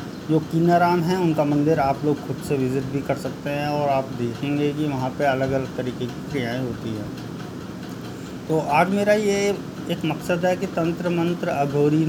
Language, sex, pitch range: Hindi, male, 135-160 Hz